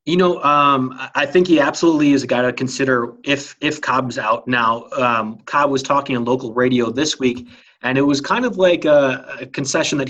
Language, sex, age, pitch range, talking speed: English, male, 30-49, 120-140 Hz, 215 wpm